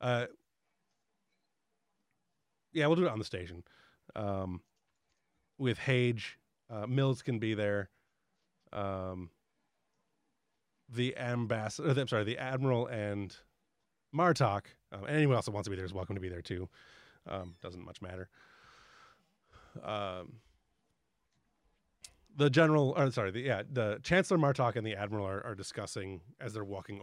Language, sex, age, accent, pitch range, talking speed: English, male, 30-49, American, 95-125 Hz, 140 wpm